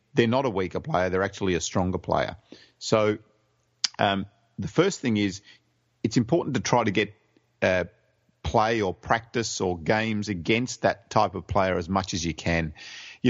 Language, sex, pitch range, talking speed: English, male, 90-115 Hz, 175 wpm